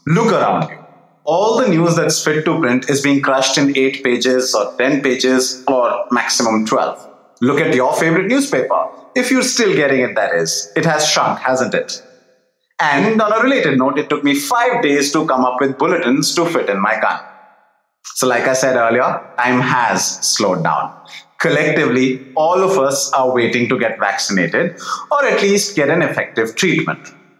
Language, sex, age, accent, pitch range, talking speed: English, male, 30-49, Indian, 130-170 Hz, 185 wpm